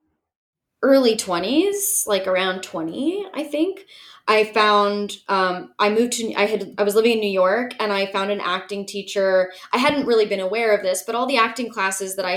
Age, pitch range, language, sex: 20-39, 185-240 Hz, English, female